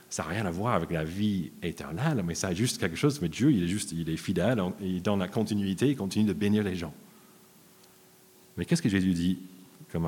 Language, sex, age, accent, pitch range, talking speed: French, male, 40-59, French, 90-140 Hz, 240 wpm